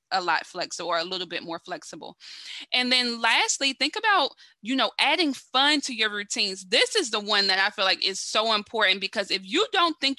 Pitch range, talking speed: 190-250 Hz, 220 wpm